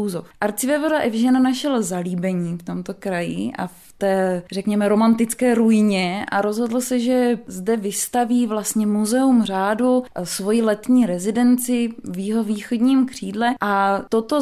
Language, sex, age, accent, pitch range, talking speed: Czech, female, 20-39, native, 205-245 Hz, 130 wpm